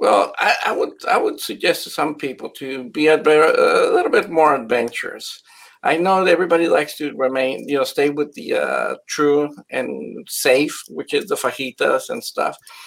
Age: 50-69